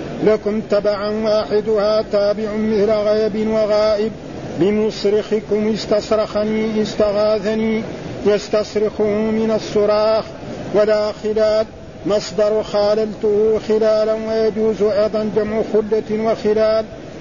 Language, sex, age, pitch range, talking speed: Arabic, male, 50-69, 210-220 Hz, 80 wpm